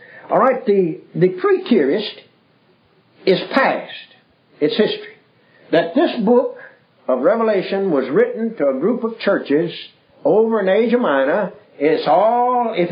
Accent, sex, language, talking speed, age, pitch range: American, male, English, 125 wpm, 60-79, 140-220 Hz